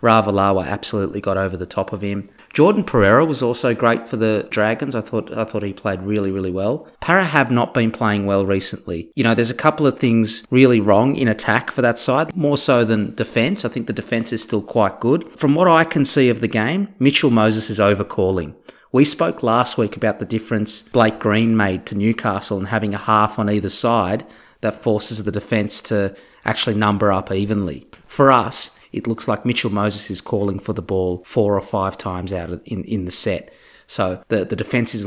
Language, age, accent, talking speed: English, 30-49, Australian, 210 wpm